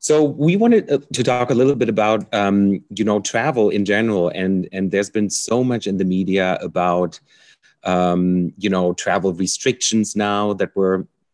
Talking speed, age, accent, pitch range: 175 wpm, 30-49, German, 90-110 Hz